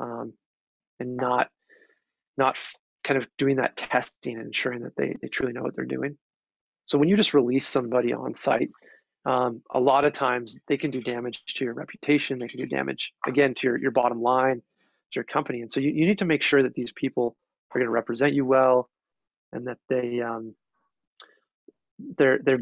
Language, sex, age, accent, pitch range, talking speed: English, male, 30-49, American, 125-145 Hz, 195 wpm